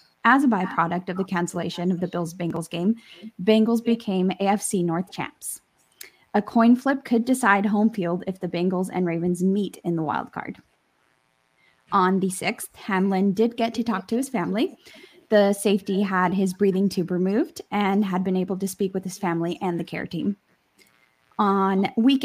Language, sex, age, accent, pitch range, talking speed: English, female, 10-29, American, 180-215 Hz, 180 wpm